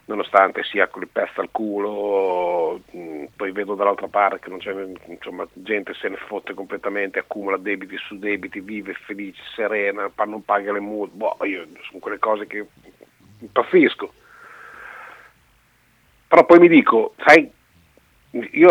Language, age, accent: Italian, 50-69, native